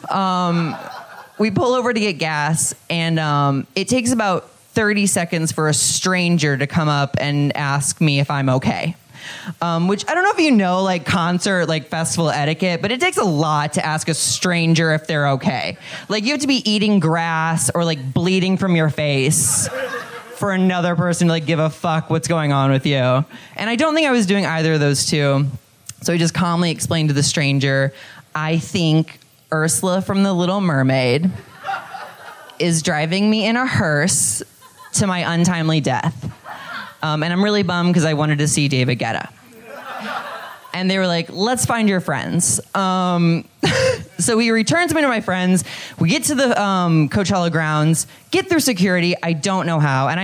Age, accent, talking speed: 20-39, American, 185 wpm